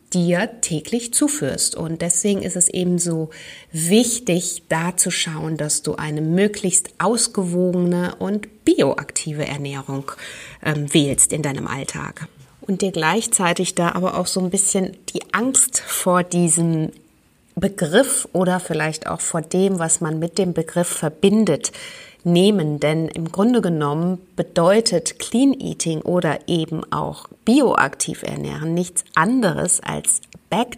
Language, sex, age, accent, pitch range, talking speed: German, female, 30-49, German, 170-220 Hz, 135 wpm